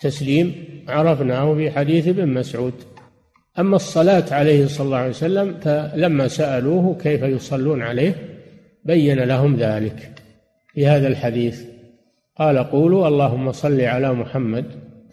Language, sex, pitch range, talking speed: Arabic, male, 125-160 Hz, 120 wpm